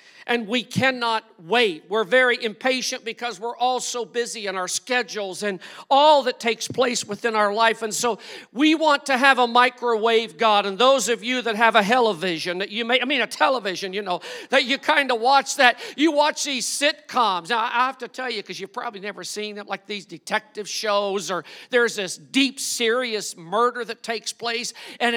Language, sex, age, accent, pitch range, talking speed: English, male, 50-69, American, 220-290 Hz, 200 wpm